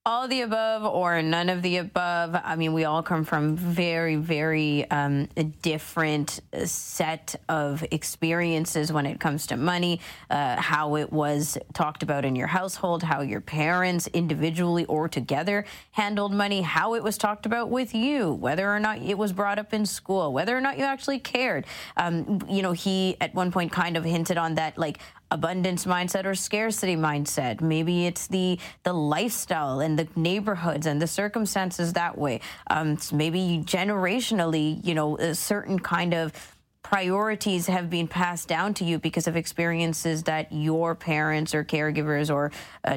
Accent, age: American, 30-49